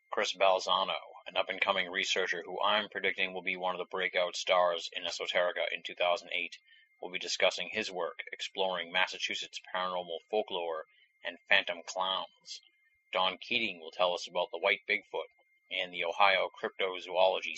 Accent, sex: American, male